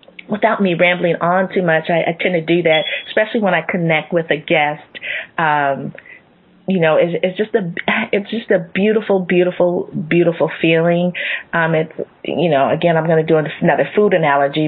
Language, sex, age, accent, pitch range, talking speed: English, female, 30-49, American, 165-190 Hz, 185 wpm